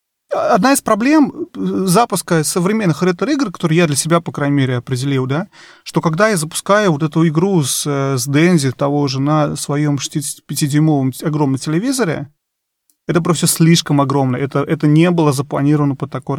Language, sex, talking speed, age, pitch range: Russian, male, 155 wpm, 30-49, 135-160 Hz